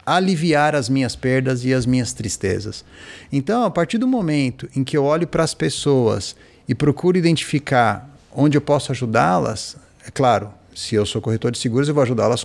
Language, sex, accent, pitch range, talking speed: Portuguese, male, Brazilian, 115-160 Hz, 185 wpm